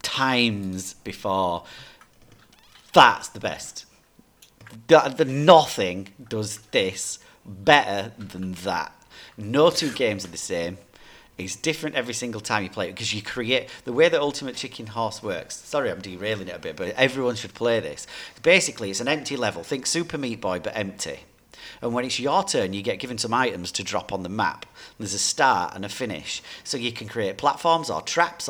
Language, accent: English, British